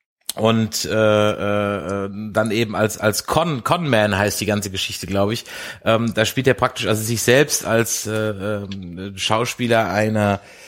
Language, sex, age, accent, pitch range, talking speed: German, male, 30-49, German, 105-135 Hz, 165 wpm